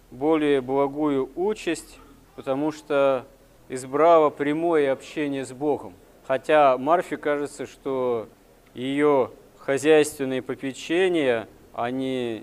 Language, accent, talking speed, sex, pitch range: Russian, native, 85 wpm, male, 130-155 Hz